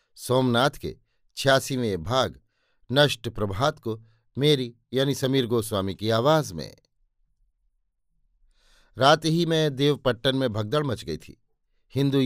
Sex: male